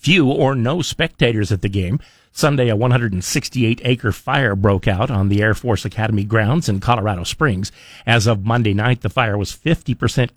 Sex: male